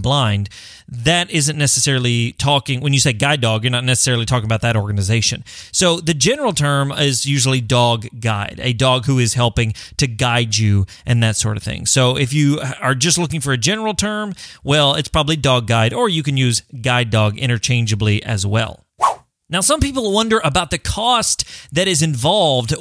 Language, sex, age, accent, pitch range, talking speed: English, male, 30-49, American, 120-160 Hz, 190 wpm